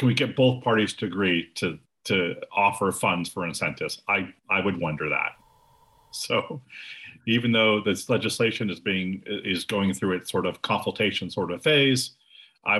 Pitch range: 95-125 Hz